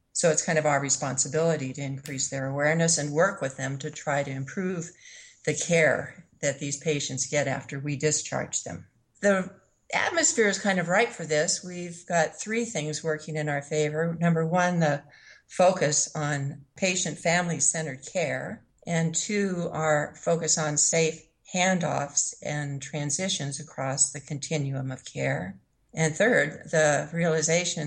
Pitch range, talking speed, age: 145-170 Hz, 150 wpm, 50-69